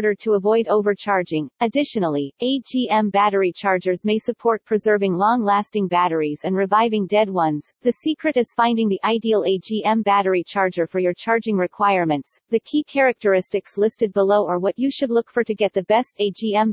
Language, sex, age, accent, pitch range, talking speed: English, female, 40-59, American, 185-230 Hz, 160 wpm